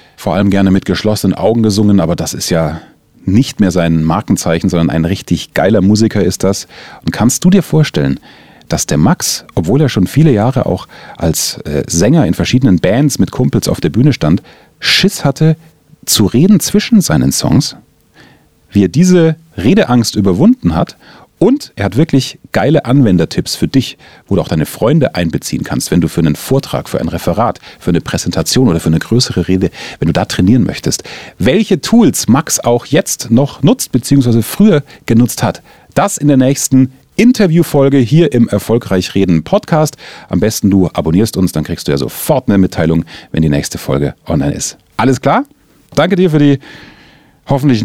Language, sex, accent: German, male, German